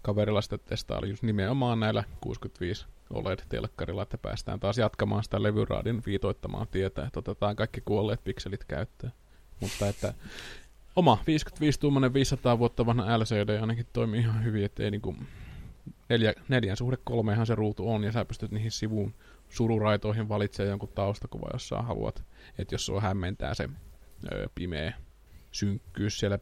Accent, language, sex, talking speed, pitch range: native, Finnish, male, 160 wpm, 100-115 Hz